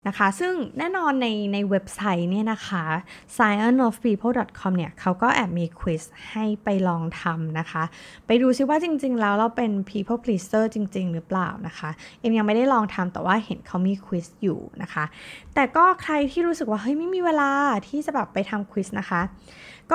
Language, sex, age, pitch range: Thai, female, 20-39, 180-245 Hz